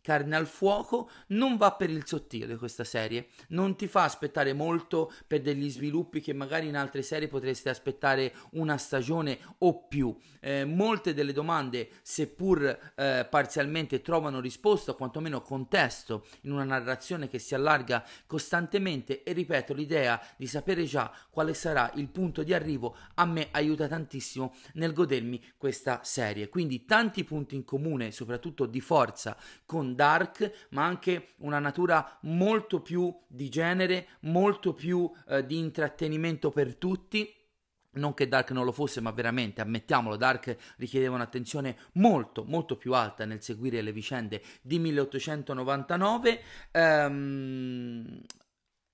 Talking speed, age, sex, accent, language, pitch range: 140 wpm, 30-49, male, native, Italian, 130-170 Hz